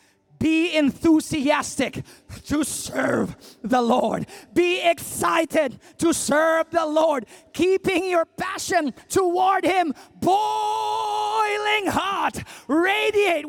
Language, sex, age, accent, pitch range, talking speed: English, male, 30-49, American, 315-405 Hz, 90 wpm